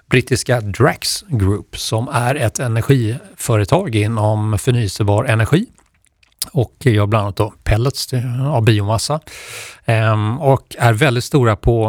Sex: male